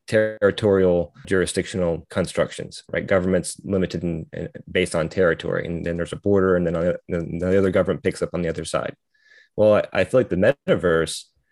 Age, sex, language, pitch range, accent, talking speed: 20-39, male, English, 90-105 Hz, American, 175 wpm